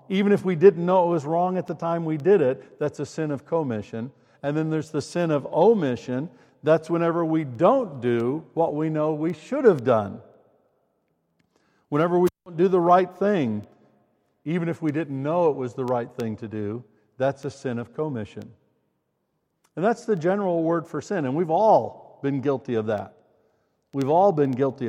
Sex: male